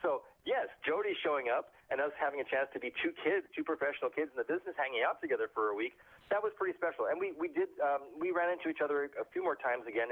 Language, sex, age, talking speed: English, male, 40-59, 260 wpm